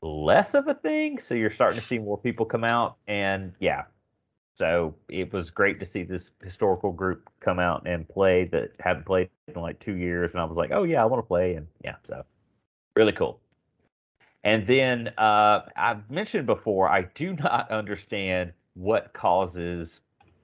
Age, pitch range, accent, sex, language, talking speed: 30-49, 90-115 Hz, American, male, English, 185 wpm